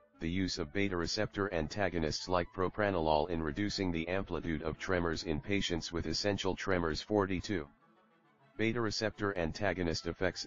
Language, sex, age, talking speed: English, male, 40-59, 140 wpm